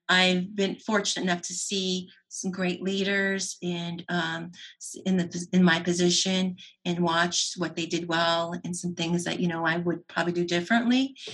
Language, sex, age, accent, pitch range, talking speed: English, female, 30-49, American, 175-210 Hz, 175 wpm